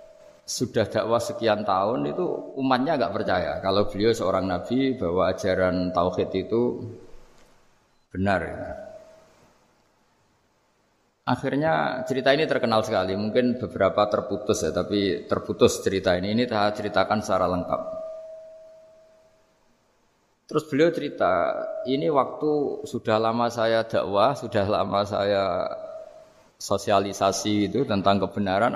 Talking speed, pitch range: 105 wpm, 105-170 Hz